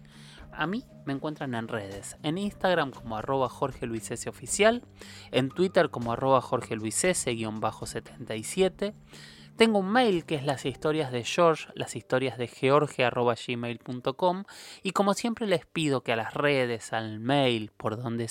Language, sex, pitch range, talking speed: Spanish, male, 110-150 Hz, 165 wpm